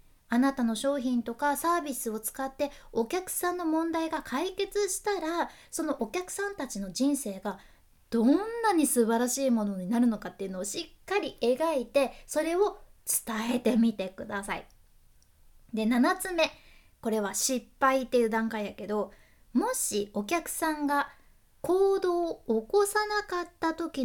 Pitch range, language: 225-330 Hz, Japanese